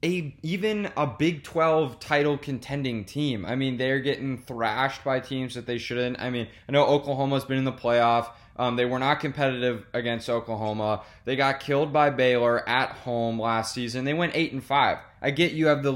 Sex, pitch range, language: male, 115-145 Hz, English